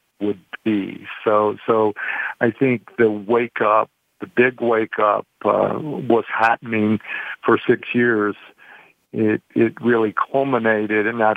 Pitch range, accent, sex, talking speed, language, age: 105-115 Hz, American, male, 130 wpm, English, 50-69